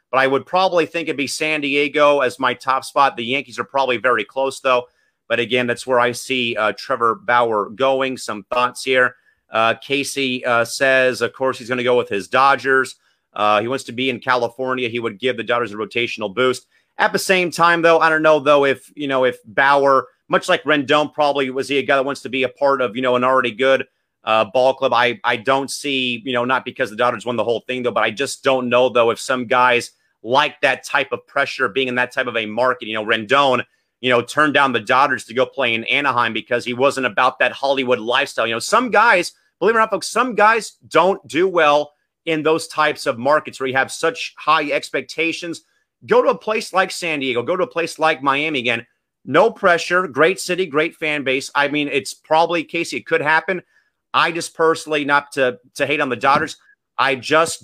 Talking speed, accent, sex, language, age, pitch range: 230 wpm, American, male, English, 30-49, 125-155 Hz